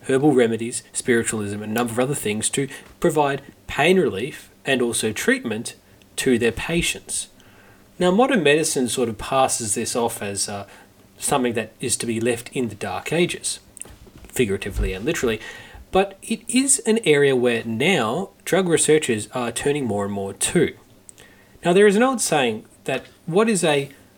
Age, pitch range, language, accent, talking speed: 30-49, 110-180 Hz, English, Australian, 165 wpm